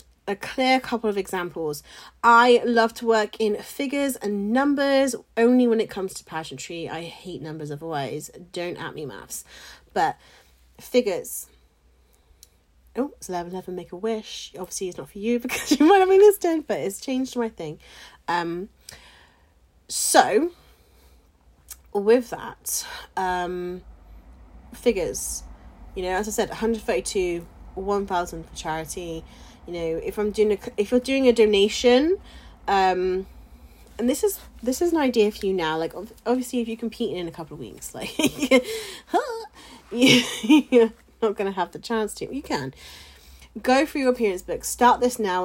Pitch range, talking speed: 165-240 Hz, 155 wpm